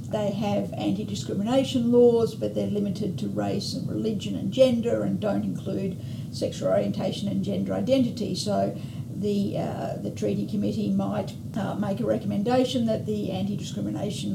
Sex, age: female, 50-69